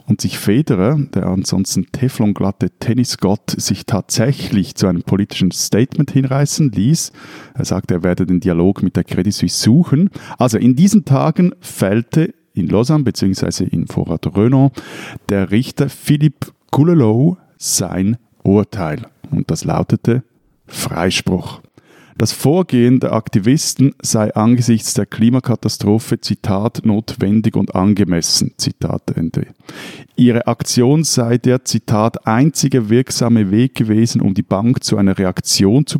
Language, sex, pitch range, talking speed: German, male, 100-135 Hz, 130 wpm